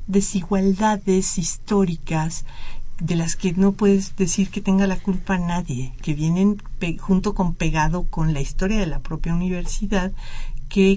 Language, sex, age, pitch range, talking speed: Spanish, female, 50-69, 165-205 Hz, 150 wpm